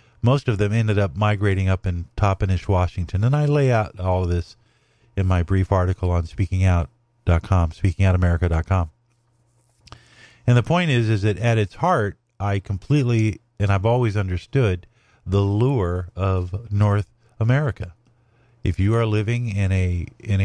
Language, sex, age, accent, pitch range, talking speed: English, male, 50-69, American, 95-120 Hz, 150 wpm